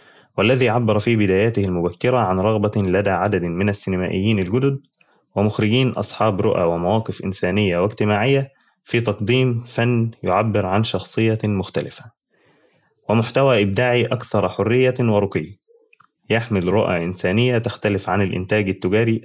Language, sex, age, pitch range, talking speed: Arabic, male, 20-39, 95-115 Hz, 115 wpm